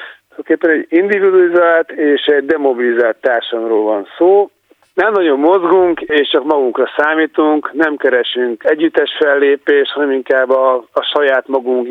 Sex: male